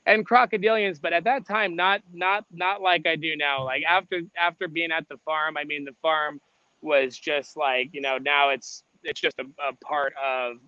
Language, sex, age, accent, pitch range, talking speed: English, male, 20-39, American, 135-160 Hz, 210 wpm